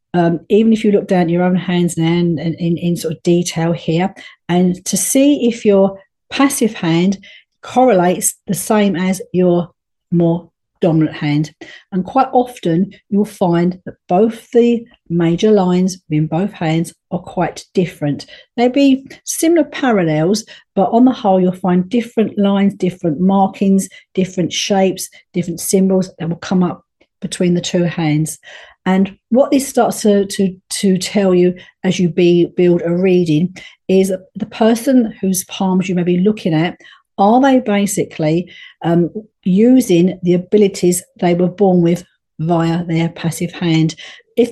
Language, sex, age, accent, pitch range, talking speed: English, female, 50-69, British, 175-215 Hz, 155 wpm